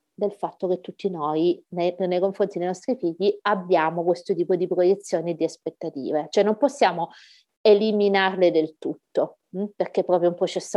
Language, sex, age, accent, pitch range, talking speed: Italian, female, 30-49, native, 175-215 Hz, 165 wpm